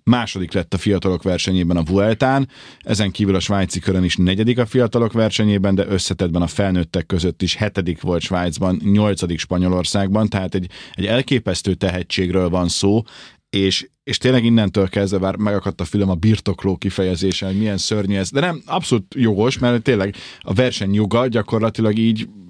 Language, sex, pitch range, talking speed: Hungarian, male, 95-120 Hz, 165 wpm